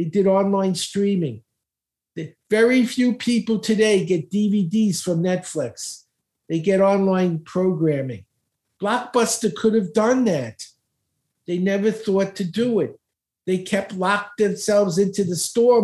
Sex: male